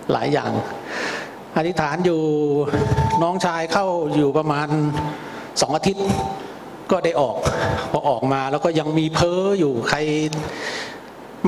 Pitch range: 130-155 Hz